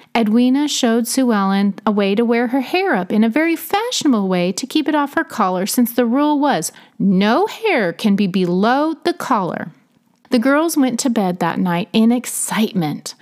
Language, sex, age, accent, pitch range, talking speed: English, female, 30-49, American, 205-275 Hz, 190 wpm